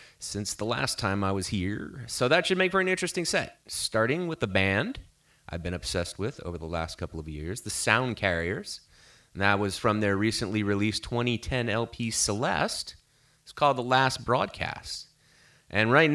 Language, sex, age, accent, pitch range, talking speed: English, male, 30-49, American, 95-125 Hz, 180 wpm